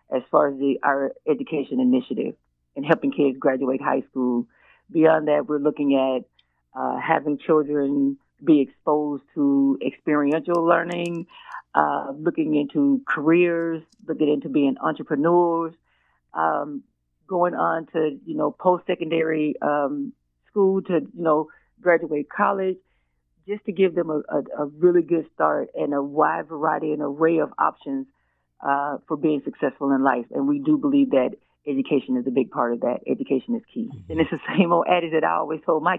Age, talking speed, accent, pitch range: 40-59, 165 wpm, American, 140-170 Hz